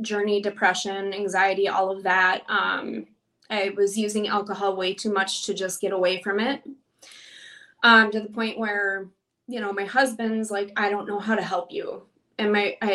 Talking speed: 185 wpm